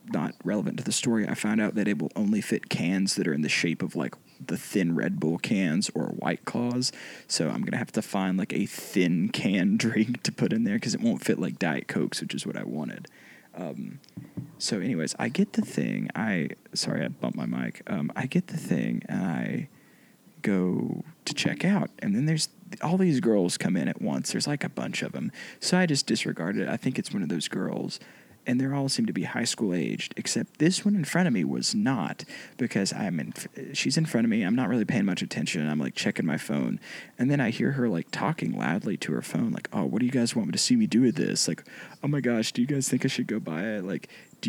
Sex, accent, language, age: male, American, English, 20-39